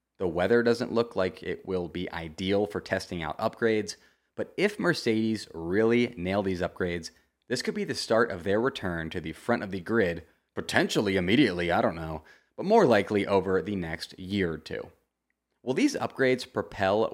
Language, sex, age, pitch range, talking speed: English, male, 20-39, 90-115 Hz, 180 wpm